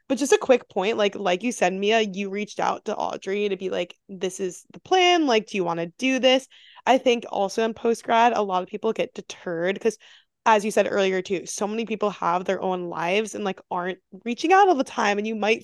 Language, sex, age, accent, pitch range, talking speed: English, female, 20-39, American, 190-250 Hz, 245 wpm